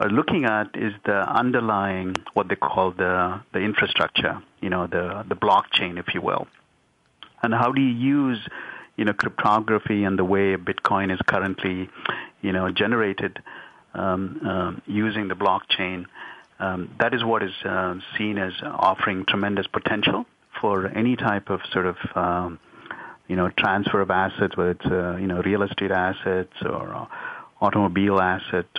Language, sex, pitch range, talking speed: English, male, 95-105 Hz, 160 wpm